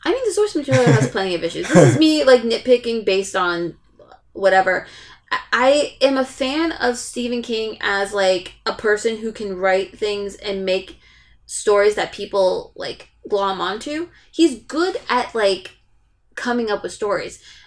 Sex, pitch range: female, 195-250 Hz